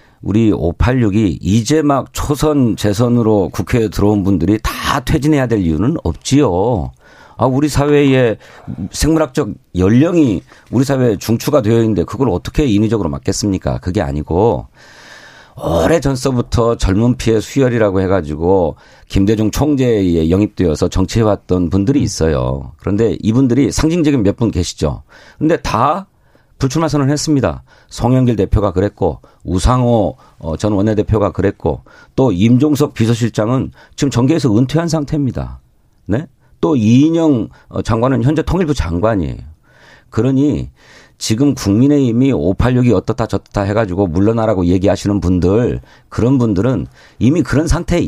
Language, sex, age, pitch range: Korean, male, 40-59, 95-135 Hz